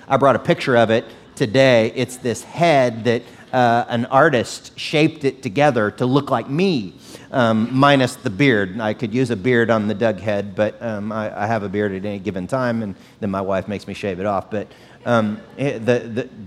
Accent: American